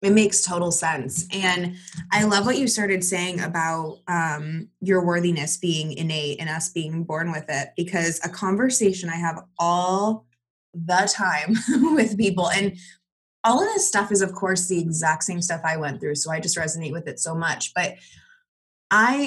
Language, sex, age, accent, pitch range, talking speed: English, female, 20-39, American, 165-205 Hz, 180 wpm